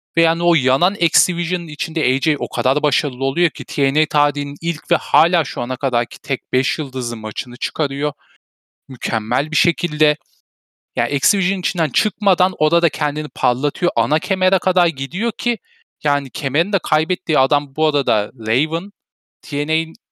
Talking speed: 145 wpm